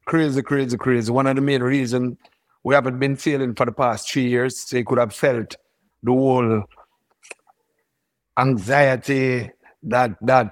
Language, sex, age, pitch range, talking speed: English, male, 50-69, 120-145 Hz, 155 wpm